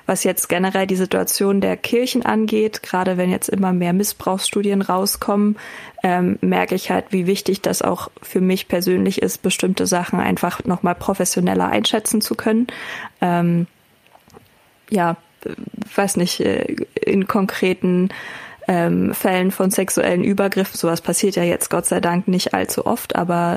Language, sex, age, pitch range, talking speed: German, female, 20-39, 175-200 Hz, 145 wpm